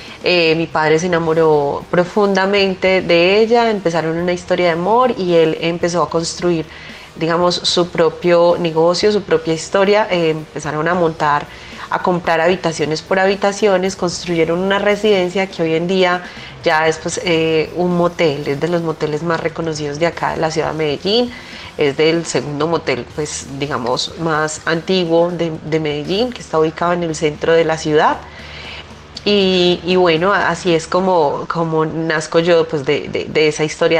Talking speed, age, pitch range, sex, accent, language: 170 wpm, 30-49, 160-185 Hz, female, Colombian, Spanish